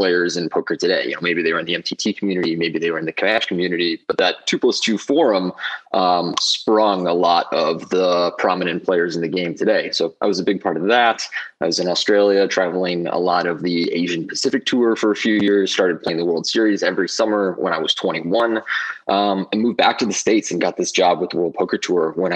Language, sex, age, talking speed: English, male, 20-39, 240 wpm